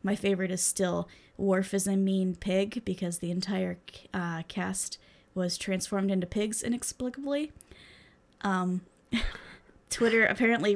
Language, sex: English, female